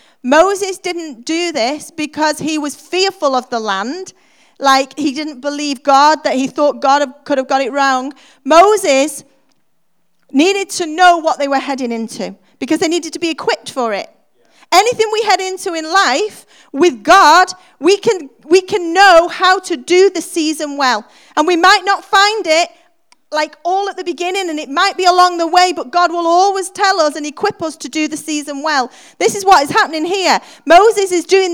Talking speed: 195 wpm